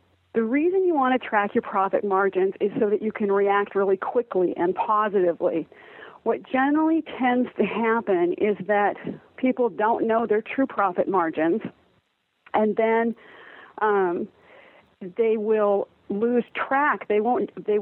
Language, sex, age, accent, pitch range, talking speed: English, female, 40-59, American, 195-235 Hz, 140 wpm